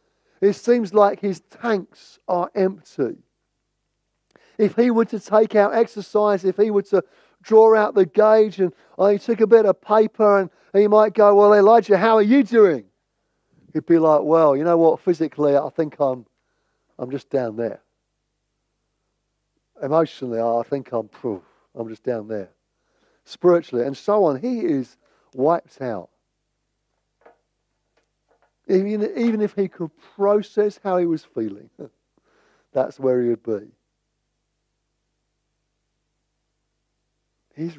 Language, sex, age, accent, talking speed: English, male, 40-59, British, 135 wpm